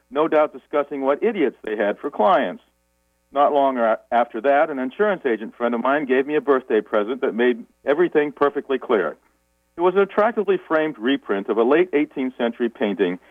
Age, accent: 50-69, American